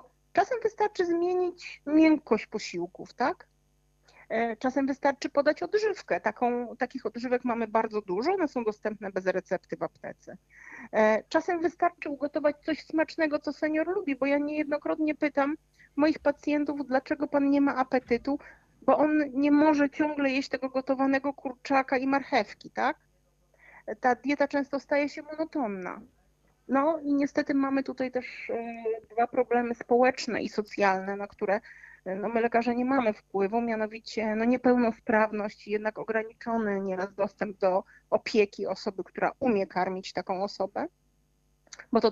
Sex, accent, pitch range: female, native, 215-290 Hz